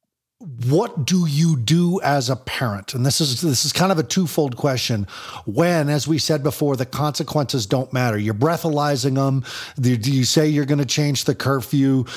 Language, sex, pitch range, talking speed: English, male, 130-165 Hz, 190 wpm